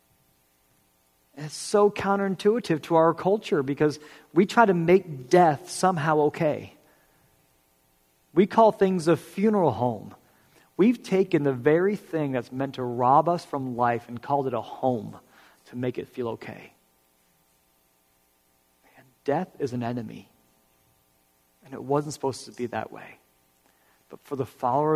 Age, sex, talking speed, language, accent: 40-59, male, 140 wpm, English, American